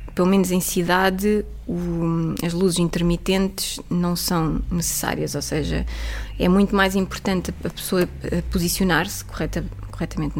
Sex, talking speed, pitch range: female, 115 wpm, 165-205 Hz